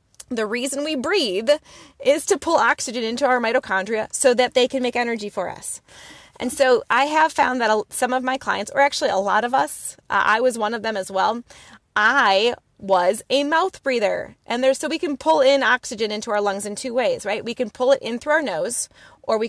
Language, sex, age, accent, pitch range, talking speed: English, female, 20-39, American, 205-275 Hz, 220 wpm